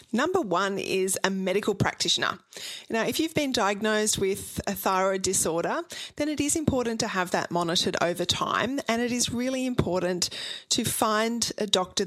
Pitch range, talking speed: 180-230 Hz, 170 wpm